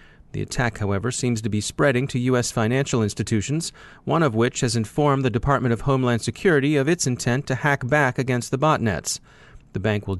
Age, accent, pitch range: 40-59, American, 110-135 Hz